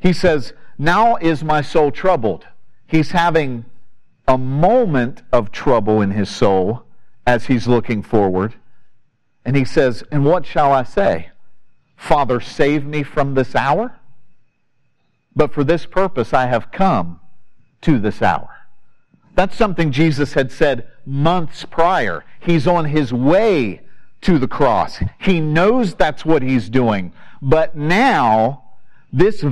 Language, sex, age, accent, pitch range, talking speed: English, male, 50-69, American, 130-185 Hz, 135 wpm